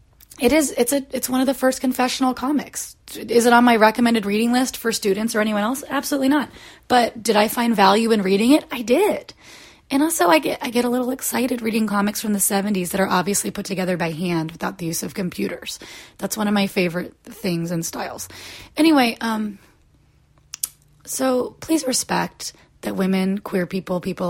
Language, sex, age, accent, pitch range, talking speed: English, female, 30-49, American, 190-260 Hz, 195 wpm